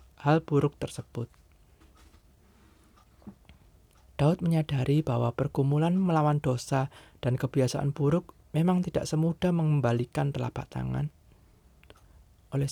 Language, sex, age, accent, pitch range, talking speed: Indonesian, male, 20-39, native, 105-160 Hz, 90 wpm